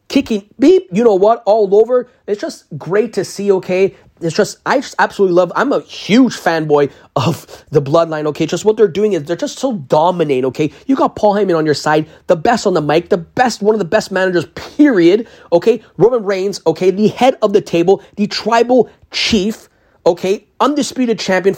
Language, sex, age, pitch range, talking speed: English, male, 30-49, 160-220 Hz, 200 wpm